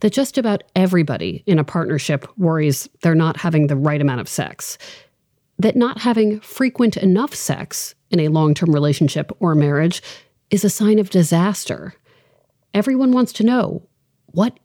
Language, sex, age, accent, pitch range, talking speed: English, female, 40-59, American, 145-205 Hz, 155 wpm